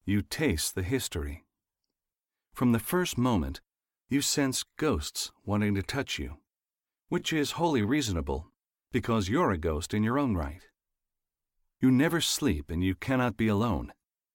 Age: 40-59